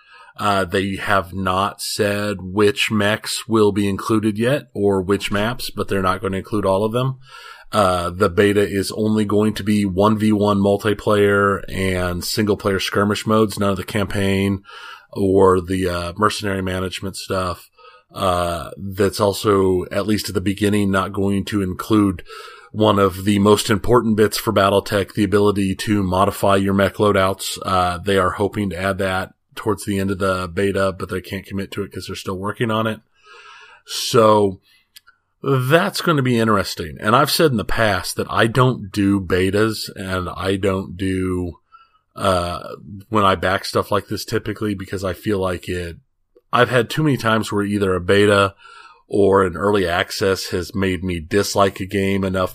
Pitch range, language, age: 95-105 Hz, English, 30-49